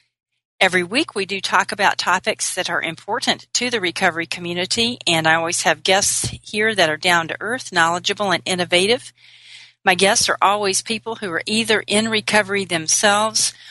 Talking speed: 170 wpm